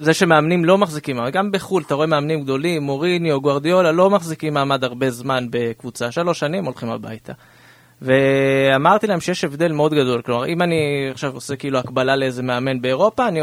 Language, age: Hebrew, 30-49